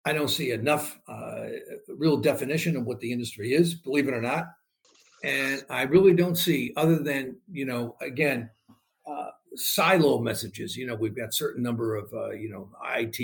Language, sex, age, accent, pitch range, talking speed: English, male, 60-79, American, 120-170 Hz, 180 wpm